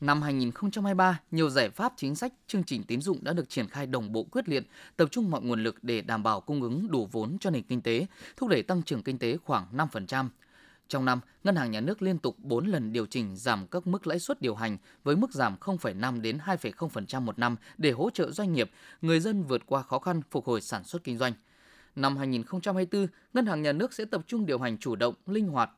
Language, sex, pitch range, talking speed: Vietnamese, male, 125-185 Hz, 235 wpm